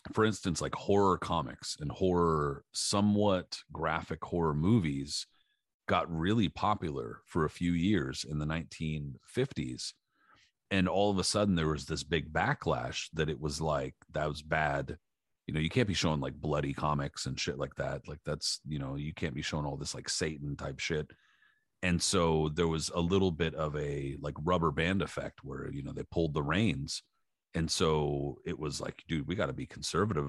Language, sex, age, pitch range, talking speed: English, male, 40-59, 75-85 Hz, 190 wpm